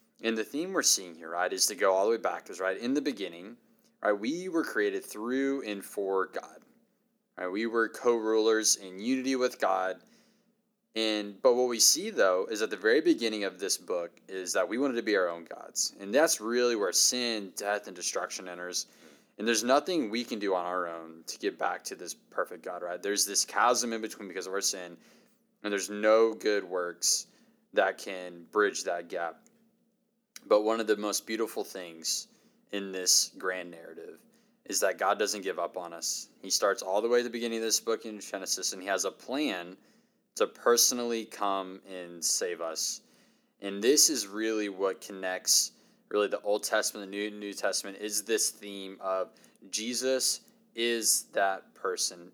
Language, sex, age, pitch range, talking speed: English, male, 20-39, 95-120 Hz, 195 wpm